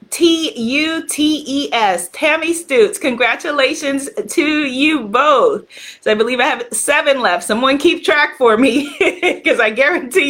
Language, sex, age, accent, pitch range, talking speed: English, female, 30-49, American, 205-285 Hz, 130 wpm